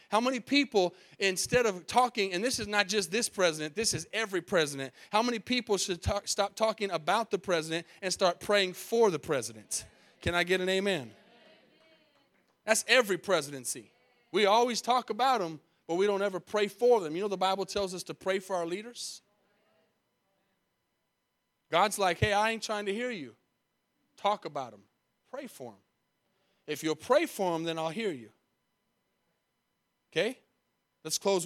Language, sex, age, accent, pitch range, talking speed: English, male, 30-49, American, 150-200 Hz, 170 wpm